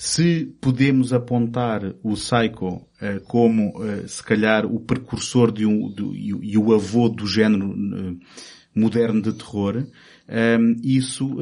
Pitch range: 110-125 Hz